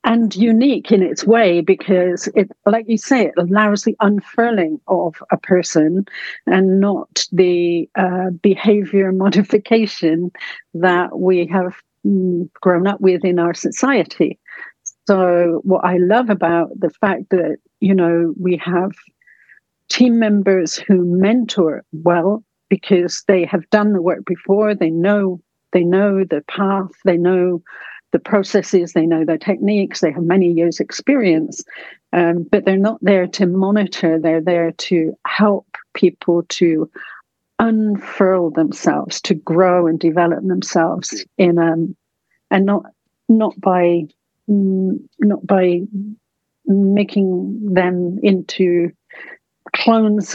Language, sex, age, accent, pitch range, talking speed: English, female, 60-79, British, 175-205 Hz, 130 wpm